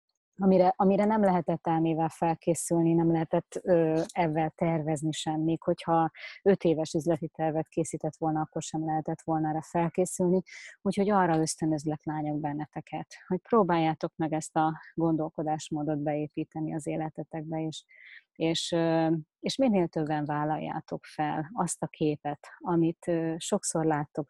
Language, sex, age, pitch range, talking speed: Hungarian, female, 30-49, 155-175 Hz, 130 wpm